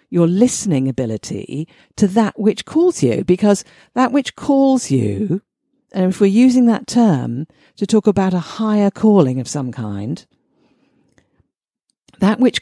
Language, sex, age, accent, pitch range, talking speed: English, female, 50-69, British, 140-205 Hz, 145 wpm